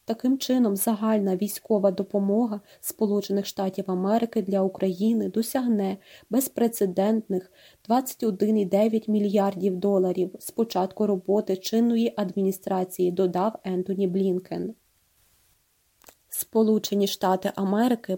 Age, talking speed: 20-39, 85 wpm